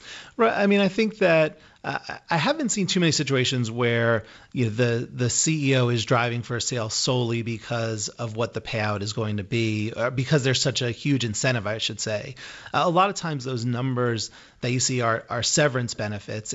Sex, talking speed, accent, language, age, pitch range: male, 210 wpm, American, English, 30-49, 110-135 Hz